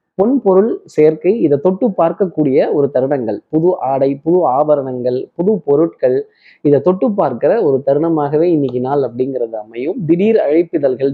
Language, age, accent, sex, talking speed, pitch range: Tamil, 20-39, native, male, 130 wpm, 135-185 Hz